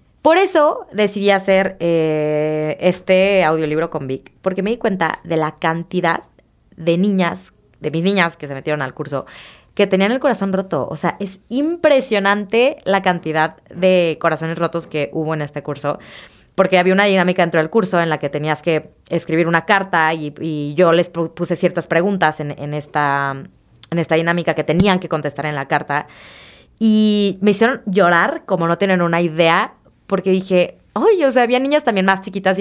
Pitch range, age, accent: 155-200 Hz, 20-39, Mexican